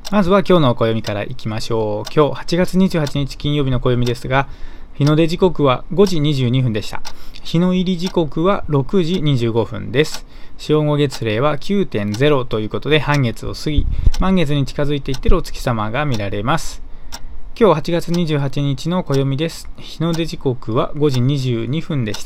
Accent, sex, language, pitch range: native, male, Japanese, 125-165 Hz